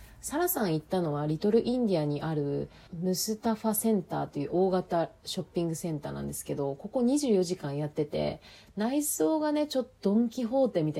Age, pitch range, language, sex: 30-49, 150-230 Hz, Japanese, female